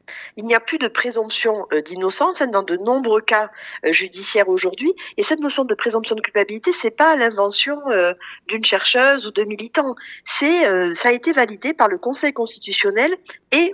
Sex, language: female, French